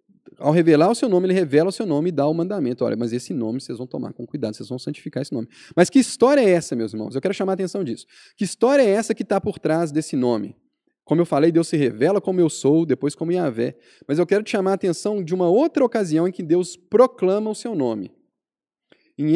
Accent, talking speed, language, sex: Brazilian, 255 wpm, Portuguese, male